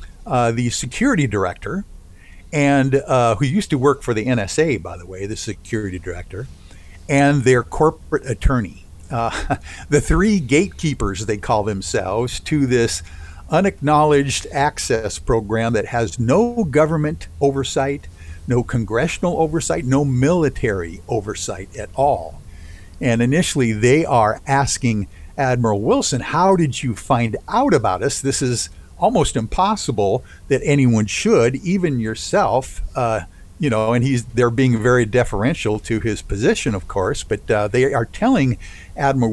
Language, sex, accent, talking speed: English, male, American, 140 wpm